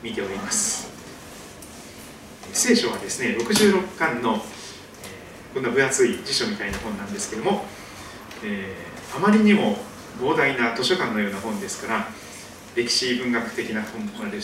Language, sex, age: Japanese, male, 40-59